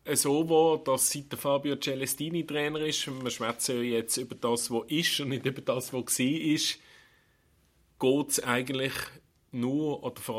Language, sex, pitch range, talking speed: German, male, 115-140 Hz, 175 wpm